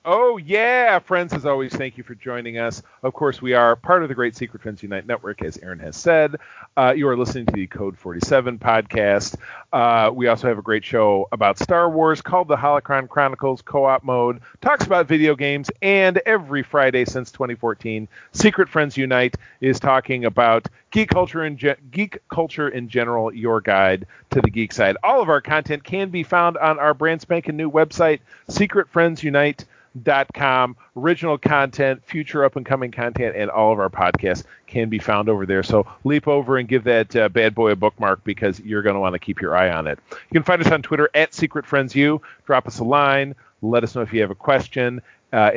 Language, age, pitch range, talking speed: English, 40-59, 115-160 Hz, 210 wpm